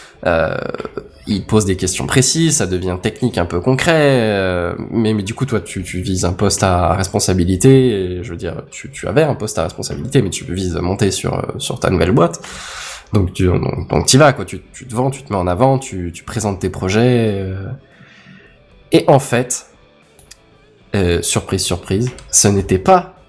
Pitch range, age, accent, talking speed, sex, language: 95-125 Hz, 20-39, French, 200 wpm, male, French